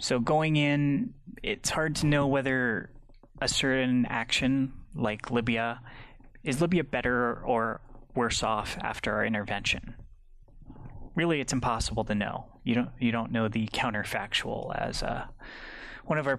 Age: 20-39